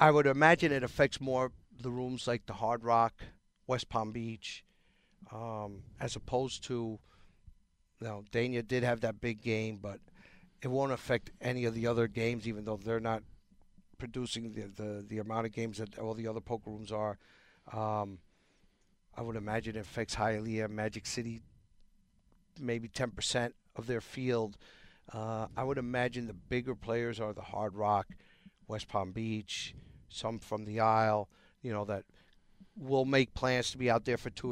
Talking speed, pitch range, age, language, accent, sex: 170 wpm, 105-125 Hz, 50-69, English, American, male